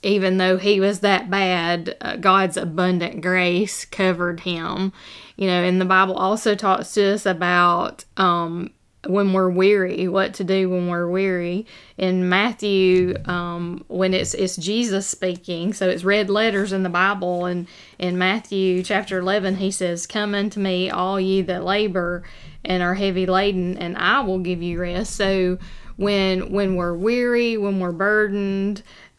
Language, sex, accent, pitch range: English, female, American, 180-200 Hz